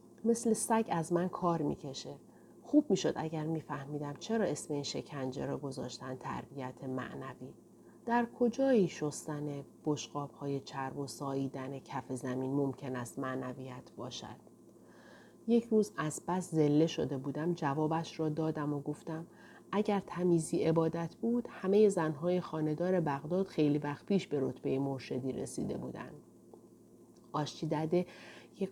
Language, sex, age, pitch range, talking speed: Persian, female, 30-49, 145-185 Hz, 130 wpm